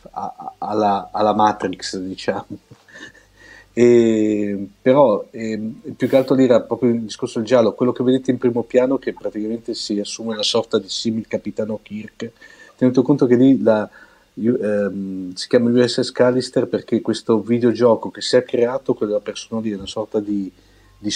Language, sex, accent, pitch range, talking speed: Italian, male, native, 105-120 Hz, 160 wpm